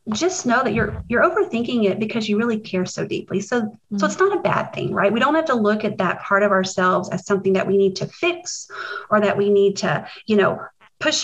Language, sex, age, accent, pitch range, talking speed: English, female, 30-49, American, 195-225 Hz, 245 wpm